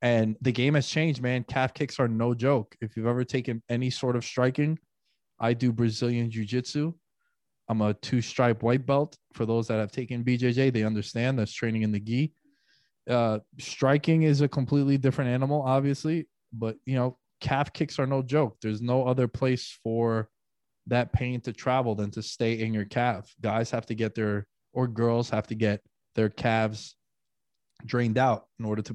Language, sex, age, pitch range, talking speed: English, male, 20-39, 110-130 Hz, 185 wpm